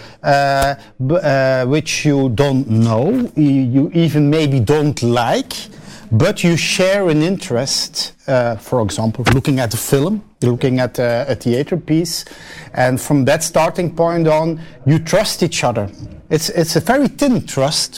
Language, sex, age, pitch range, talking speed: Ukrainian, male, 50-69, 135-180 Hz, 155 wpm